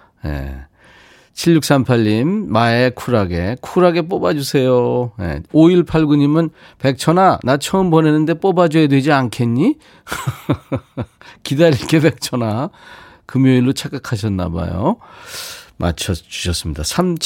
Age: 40-59